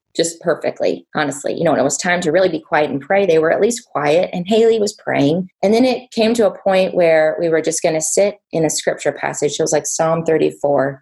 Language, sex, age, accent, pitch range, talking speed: English, female, 20-39, American, 160-205 Hz, 255 wpm